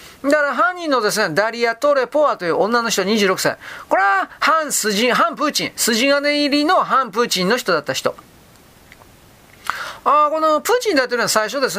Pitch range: 185-265 Hz